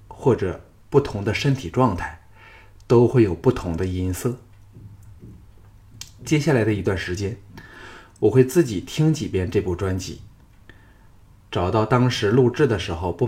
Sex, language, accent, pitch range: male, Chinese, native, 95-115 Hz